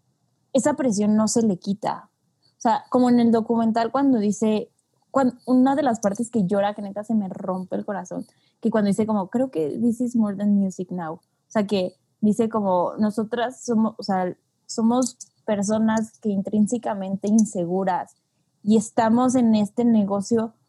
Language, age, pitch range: Spanish, 20-39, 195-235 Hz